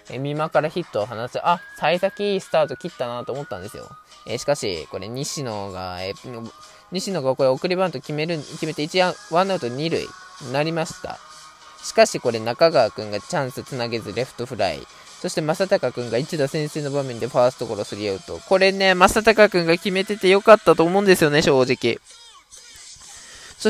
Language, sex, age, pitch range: Japanese, male, 20-39, 125-180 Hz